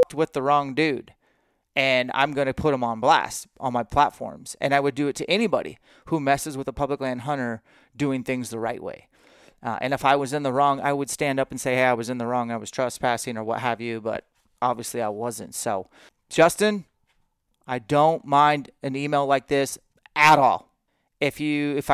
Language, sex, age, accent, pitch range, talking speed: English, male, 30-49, American, 125-145 Hz, 215 wpm